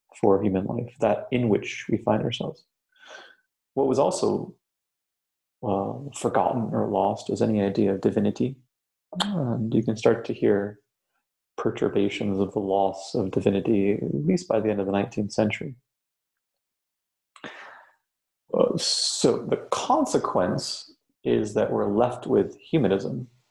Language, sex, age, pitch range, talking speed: English, male, 30-49, 100-120 Hz, 130 wpm